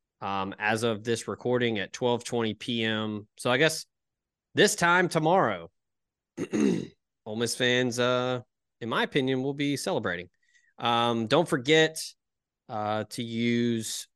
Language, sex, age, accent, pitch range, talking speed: English, male, 20-39, American, 115-140 Hz, 125 wpm